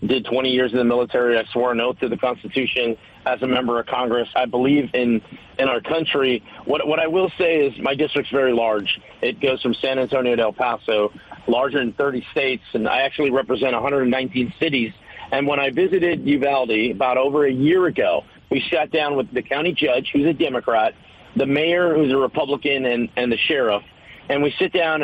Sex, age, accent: male, 40-59, American